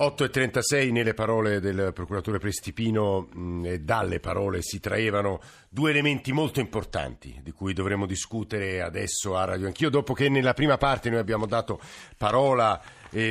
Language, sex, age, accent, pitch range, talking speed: Italian, male, 50-69, native, 100-120 Hz, 150 wpm